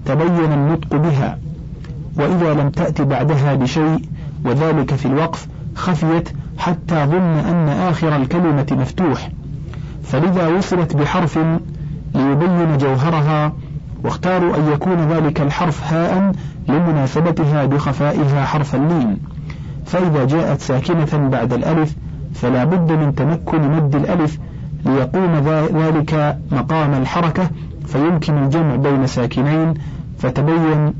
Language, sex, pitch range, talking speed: Arabic, male, 140-160 Hz, 105 wpm